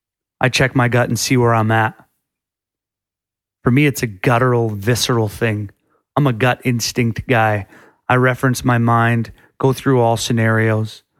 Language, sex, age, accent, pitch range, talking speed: English, male, 30-49, American, 110-125 Hz, 155 wpm